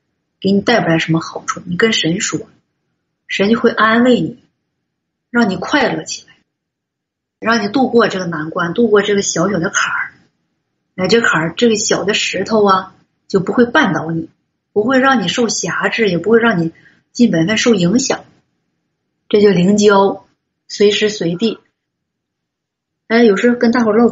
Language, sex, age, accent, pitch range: Chinese, female, 30-49, native, 185-235 Hz